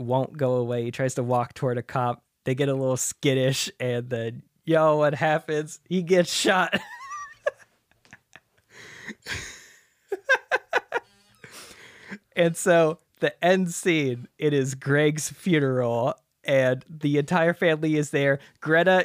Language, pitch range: English, 120-155 Hz